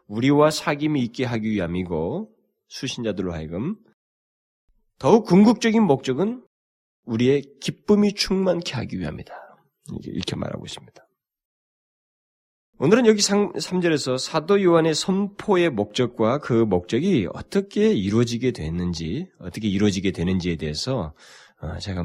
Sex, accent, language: male, native, Korean